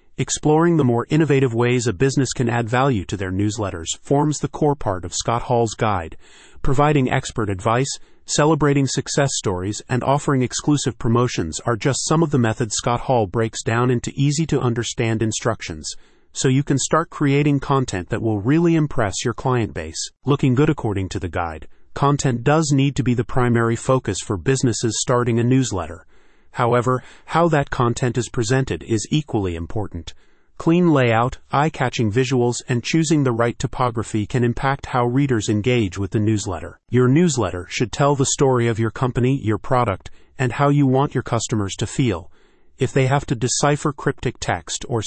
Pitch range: 110-140 Hz